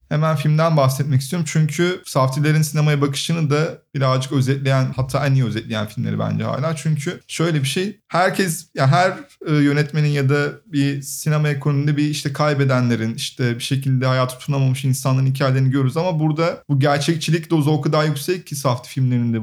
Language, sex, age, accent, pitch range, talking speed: Turkish, male, 30-49, native, 140-165 Hz, 165 wpm